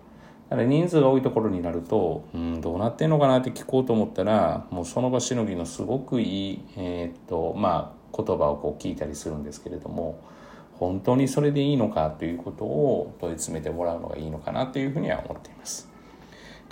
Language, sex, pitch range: Japanese, male, 85-130 Hz